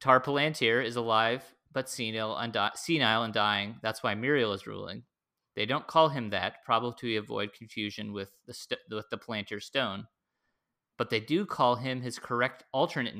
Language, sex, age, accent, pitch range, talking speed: English, male, 30-49, American, 105-135 Hz, 175 wpm